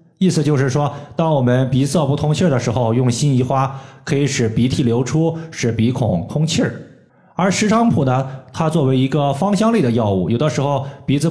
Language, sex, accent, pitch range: Chinese, male, native, 120-160 Hz